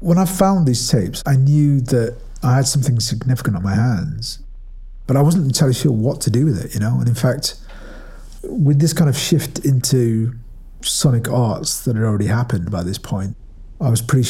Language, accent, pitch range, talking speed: English, British, 110-135 Hz, 200 wpm